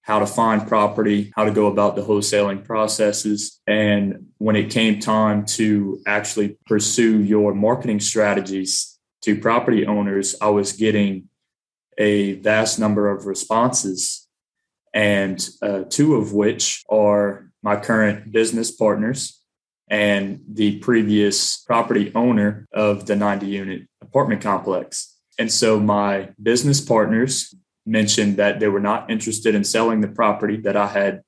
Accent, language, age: American, English, 20-39